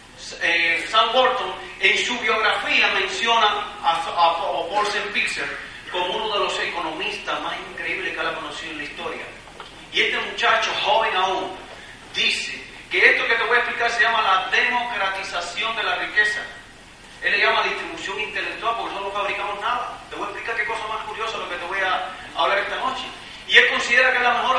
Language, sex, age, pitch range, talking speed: Spanish, male, 40-59, 205-250 Hz, 200 wpm